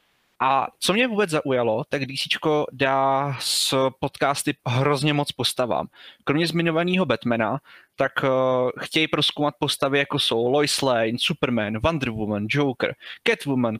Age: 20-39